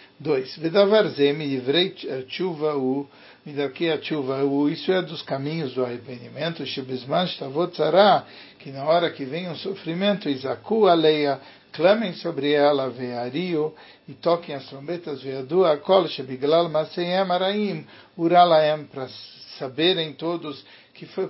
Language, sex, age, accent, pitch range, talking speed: English, male, 60-79, Brazilian, 135-175 Hz, 150 wpm